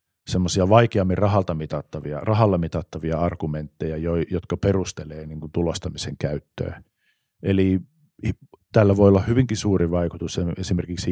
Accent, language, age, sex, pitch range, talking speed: native, Finnish, 50-69, male, 80-95 Hz, 95 wpm